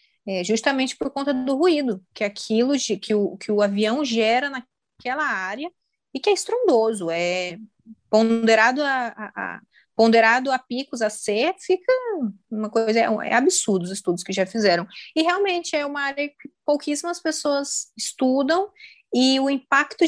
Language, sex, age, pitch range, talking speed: Portuguese, female, 20-39, 190-275 Hz, 165 wpm